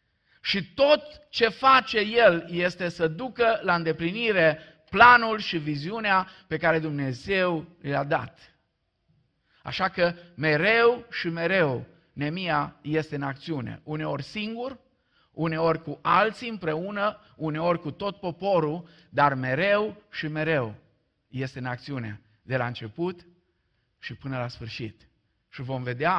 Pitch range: 125-170 Hz